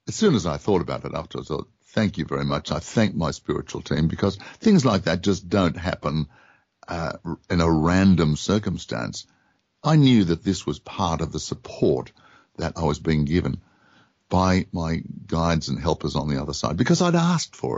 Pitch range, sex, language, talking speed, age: 80-110 Hz, male, English, 195 wpm, 60-79